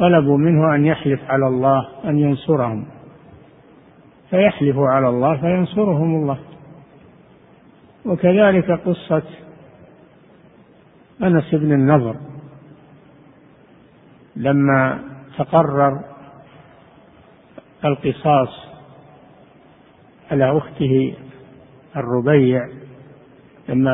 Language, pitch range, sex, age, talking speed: Arabic, 135-160 Hz, male, 50-69, 65 wpm